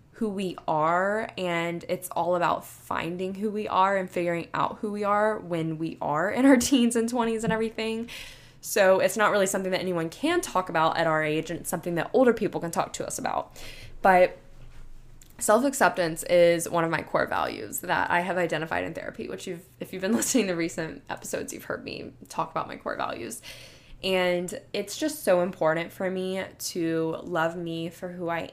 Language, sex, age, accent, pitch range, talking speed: English, female, 10-29, American, 160-190 Hz, 200 wpm